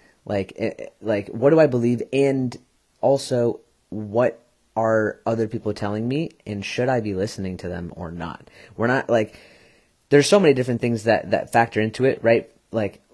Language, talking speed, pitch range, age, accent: English, 175 wpm, 105-120 Hz, 30-49, American